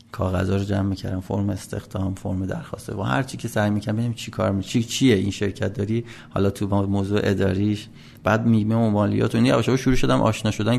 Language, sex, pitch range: Persian, male, 100-120 Hz